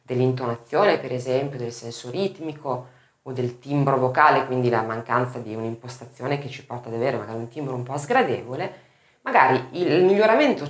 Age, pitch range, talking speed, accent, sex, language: 30-49, 125-185 Hz, 165 wpm, native, female, Italian